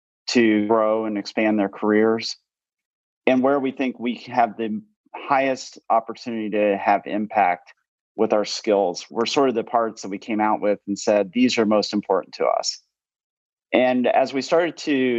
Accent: American